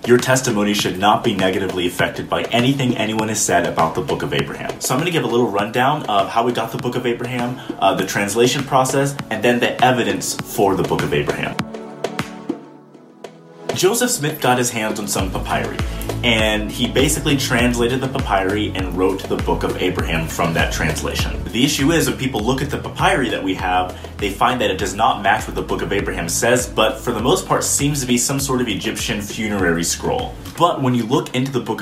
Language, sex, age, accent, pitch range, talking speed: English, male, 30-49, American, 95-130 Hz, 215 wpm